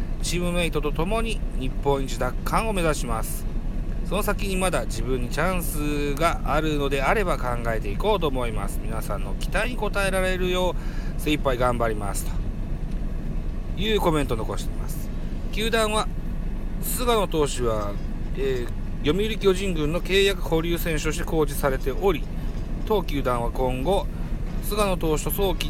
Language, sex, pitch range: Japanese, male, 115-175 Hz